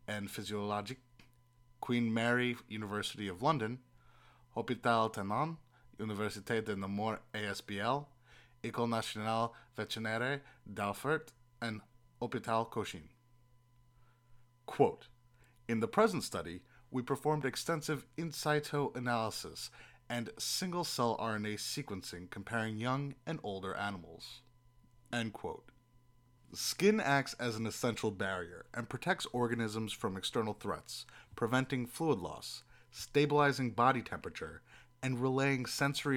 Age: 30-49